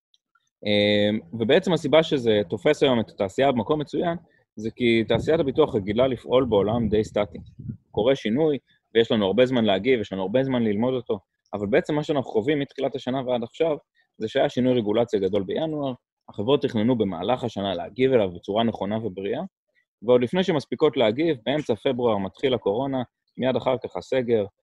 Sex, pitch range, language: male, 100-130 Hz, Hebrew